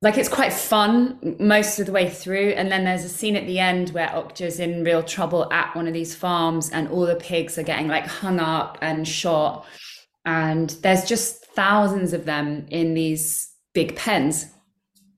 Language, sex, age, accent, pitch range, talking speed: English, female, 20-39, British, 160-190 Hz, 190 wpm